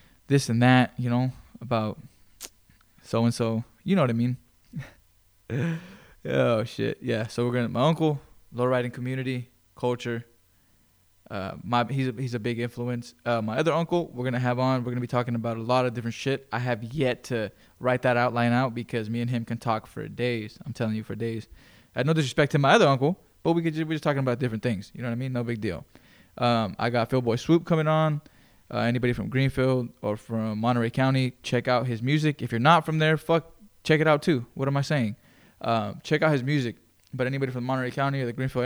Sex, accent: male, American